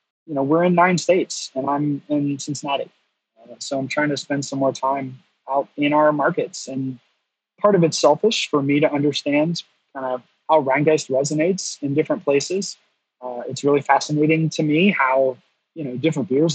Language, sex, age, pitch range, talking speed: English, male, 20-39, 135-160 Hz, 190 wpm